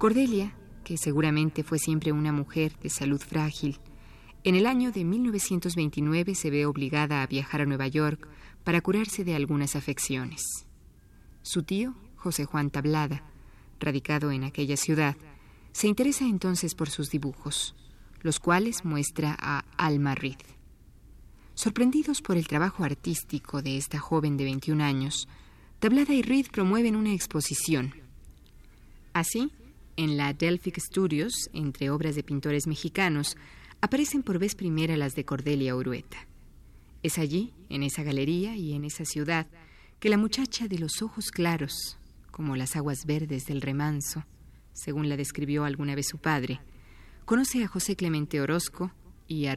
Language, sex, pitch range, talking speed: Spanish, female, 140-180 Hz, 145 wpm